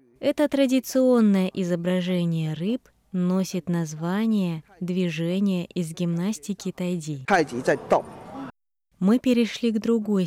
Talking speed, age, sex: 80 wpm, 20-39, female